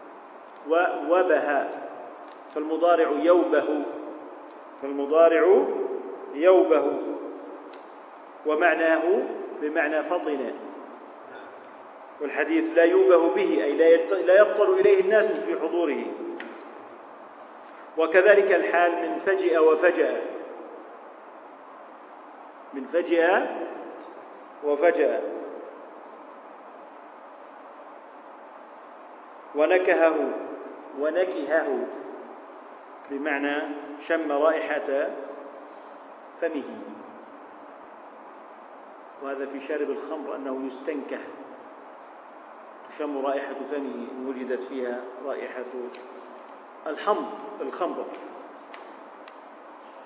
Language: Arabic